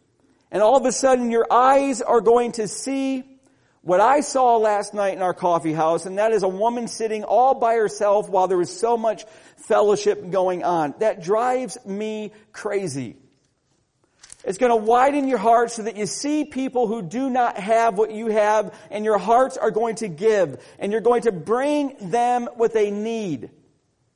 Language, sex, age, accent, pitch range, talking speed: English, male, 40-59, American, 180-230 Hz, 185 wpm